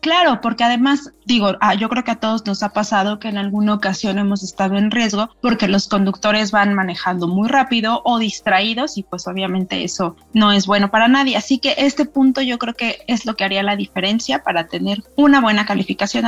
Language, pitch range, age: Spanish, 200-255 Hz, 30-49